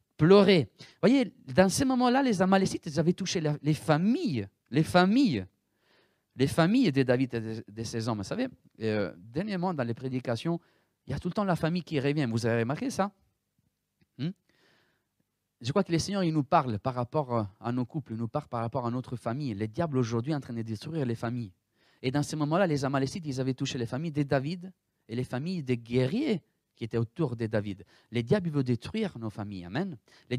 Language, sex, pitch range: French, male, 115-175 Hz